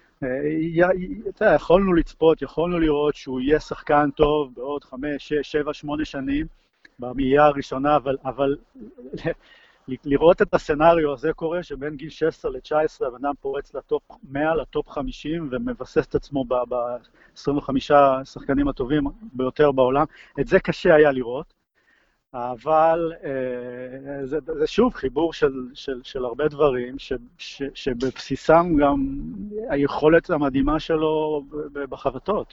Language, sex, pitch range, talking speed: Hebrew, male, 130-155 Hz, 120 wpm